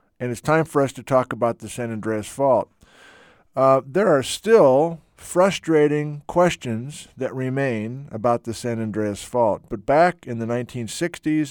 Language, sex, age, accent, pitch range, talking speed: English, male, 50-69, American, 105-135 Hz, 155 wpm